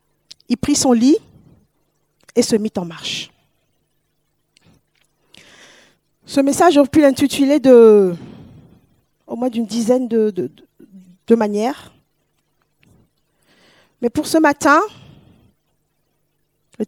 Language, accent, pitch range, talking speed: French, French, 230-300 Hz, 105 wpm